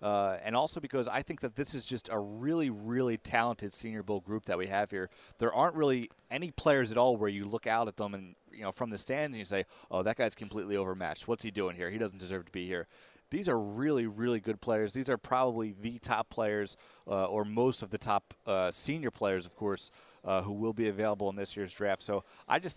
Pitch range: 100-125 Hz